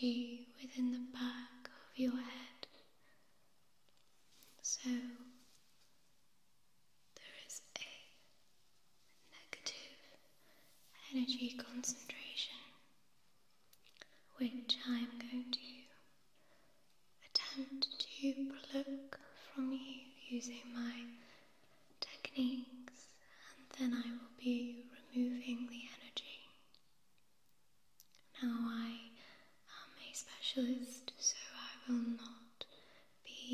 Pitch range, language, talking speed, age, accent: 240-260 Hz, English, 75 wpm, 20-39, British